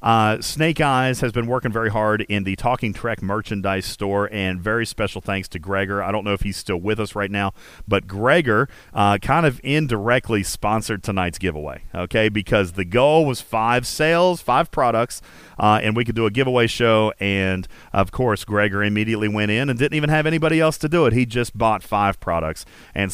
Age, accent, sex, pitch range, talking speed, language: 40-59, American, male, 100-130 Hz, 200 wpm, English